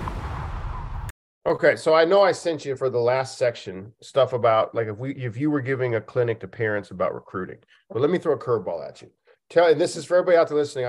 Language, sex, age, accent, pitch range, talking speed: English, male, 40-59, American, 120-190 Hz, 235 wpm